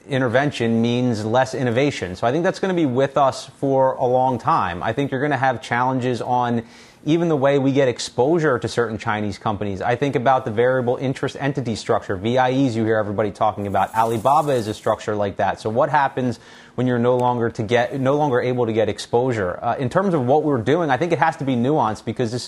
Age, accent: 30-49, American